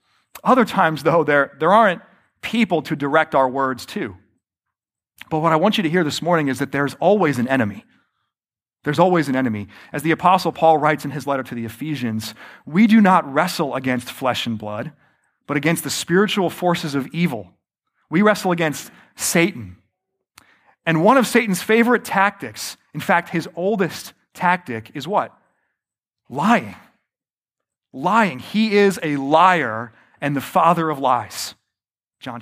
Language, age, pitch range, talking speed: English, 30-49, 145-220 Hz, 160 wpm